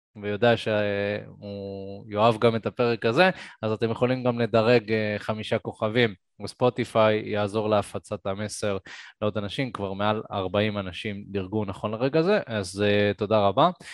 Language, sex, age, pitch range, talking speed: Hebrew, male, 20-39, 110-155 Hz, 135 wpm